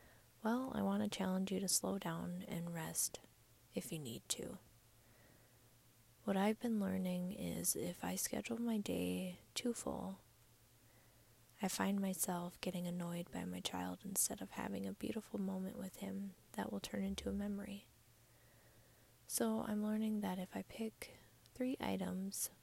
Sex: female